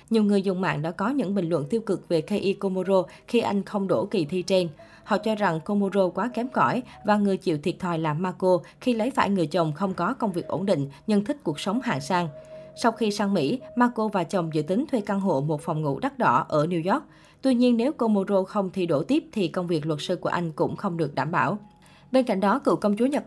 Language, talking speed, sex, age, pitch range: Vietnamese, 255 wpm, female, 20-39, 170-215 Hz